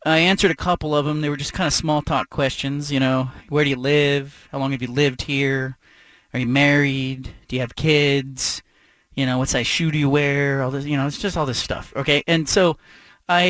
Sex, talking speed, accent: male, 240 wpm, American